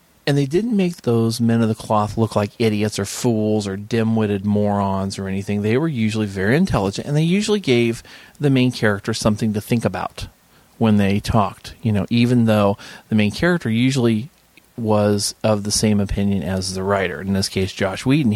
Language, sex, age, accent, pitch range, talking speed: English, male, 40-59, American, 95-115 Hz, 195 wpm